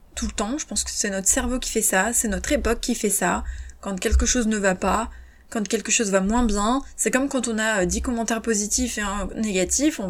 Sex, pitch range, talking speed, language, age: female, 210-250 Hz, 250 wpm, French, 20-39